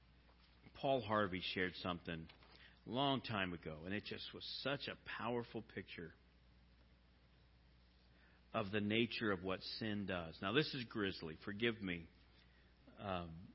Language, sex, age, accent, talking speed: English, male, 50-69, American, 135 wpm